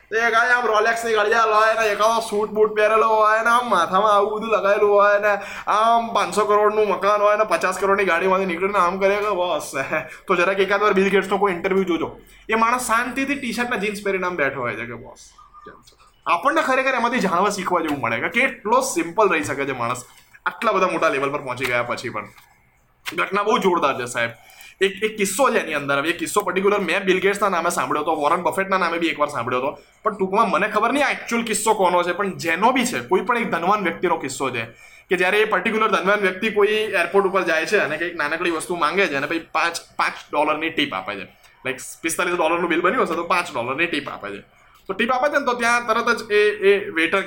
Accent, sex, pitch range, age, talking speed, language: native, male, 170-215 Hz, 20-39, 175 wpm, Gujarati